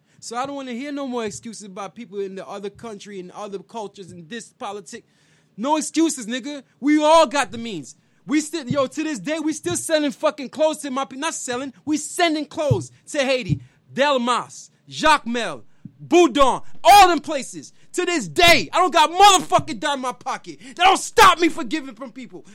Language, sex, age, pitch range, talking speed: English, male, 20-39, 230-310 Hz, 200 wpm